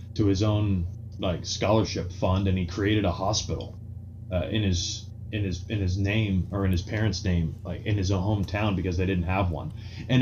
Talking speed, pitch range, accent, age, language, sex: 205 wpm, 90-115 Hz, American, 20-39, English, male